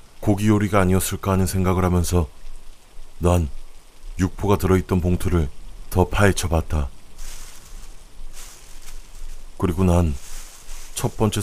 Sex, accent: male, native